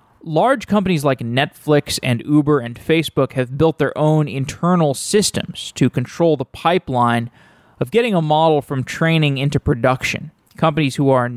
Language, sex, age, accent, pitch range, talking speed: English, male, 20-39, American, 125-155 Hz, 155 wpm